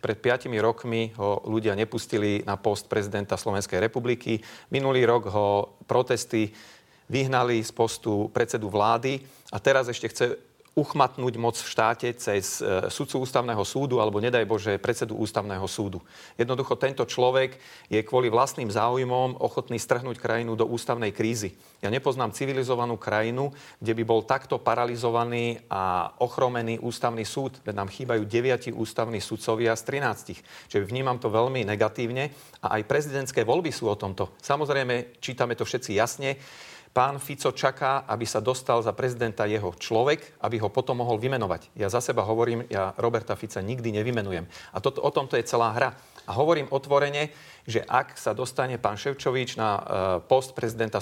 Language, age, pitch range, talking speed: Slovak, 40-59, 110-130 Hz, 155 wpm